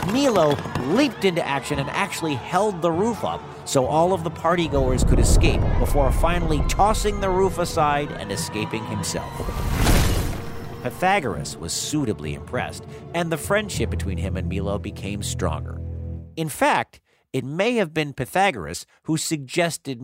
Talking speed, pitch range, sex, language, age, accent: 145 wpm, 105-165 Hz, male, English, 50-69, American